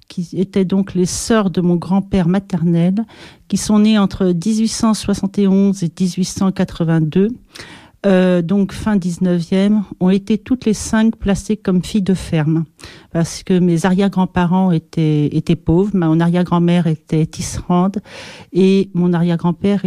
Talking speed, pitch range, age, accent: 135 wpm, 170-200 Hz, 40-59, French